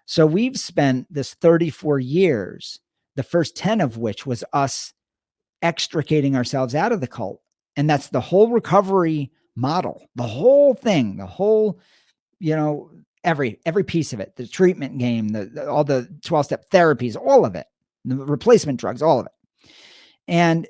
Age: 50-69